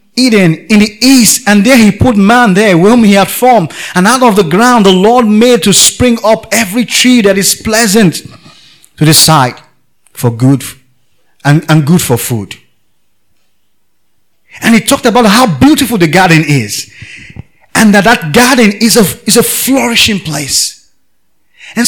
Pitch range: 155-240 Hz